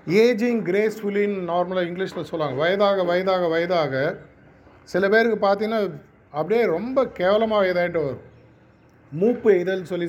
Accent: native